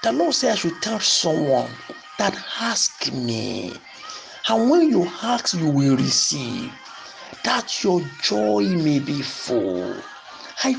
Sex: male